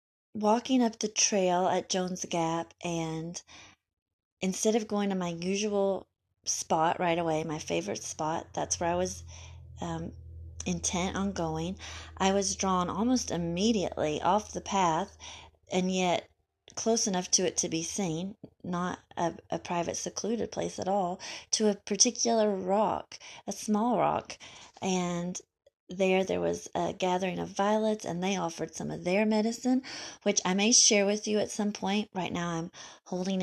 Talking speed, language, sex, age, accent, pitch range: 155 wpm, English, female, 30-49, American, 165-205 Hz